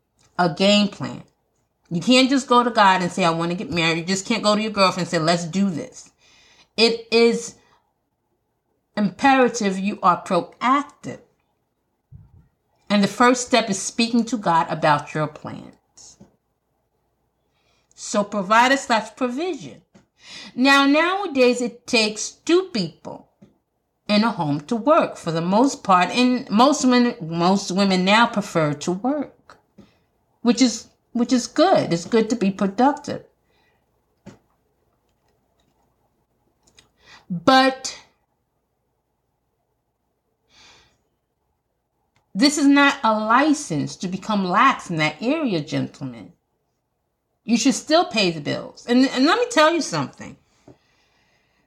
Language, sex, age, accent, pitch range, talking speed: English, female, 40-59, American, 190-260 Hz, 125 wpm